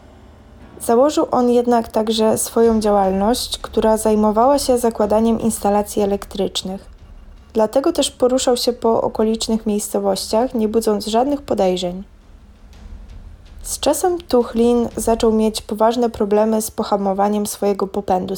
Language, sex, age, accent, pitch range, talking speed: Polish, female, 20-39, native, 195-235 Hz, 110 wpm